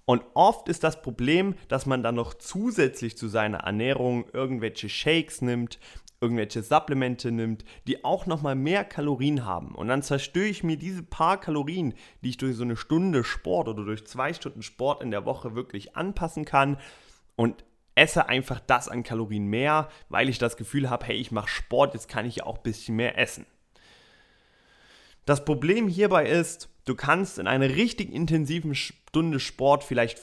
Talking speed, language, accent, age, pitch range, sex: 175 wpm, German, German, 30-49, 115-155 Hz, male